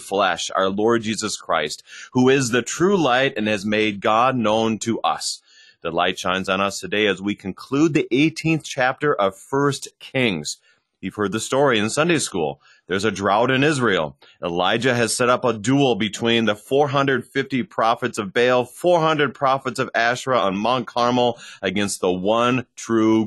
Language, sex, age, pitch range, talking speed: English, male, 30-49, 105-135 Hz, 175 wpm